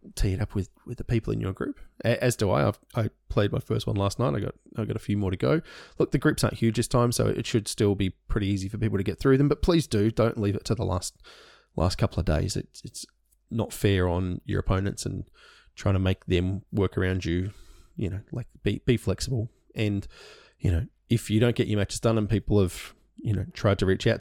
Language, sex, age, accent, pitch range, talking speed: English, male, 20-39, Australian, 95-115 Hz, 260 wpm